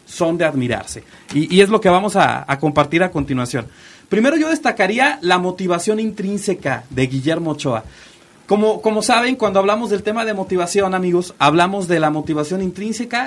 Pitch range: 155-215 Hz